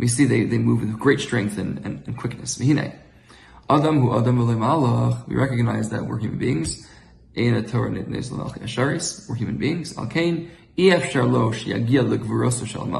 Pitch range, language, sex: 110-140 Hz, English, male